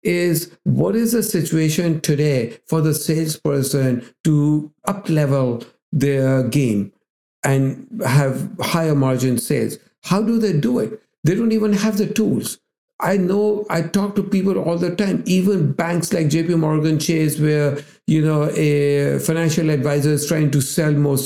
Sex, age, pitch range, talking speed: male, 60-79, 145-190 Hz, 155 wpm